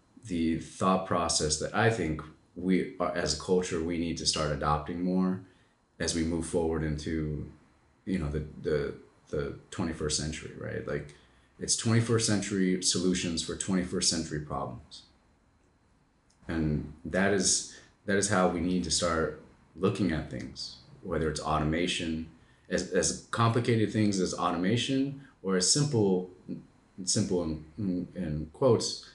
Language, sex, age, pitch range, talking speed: English, male, 30-49, 80-95 Hz, 145 wpm